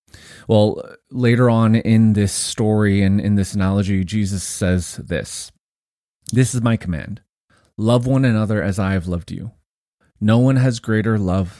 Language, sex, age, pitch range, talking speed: English, male, 30-49, 100-120 Hz, 155 wpm